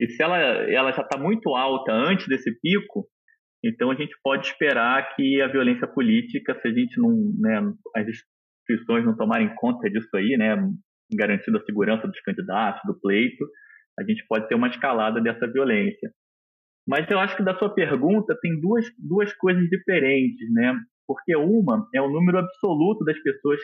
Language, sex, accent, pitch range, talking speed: Portuguese, male, Brazilian, 145-225 Hz, 175 wpm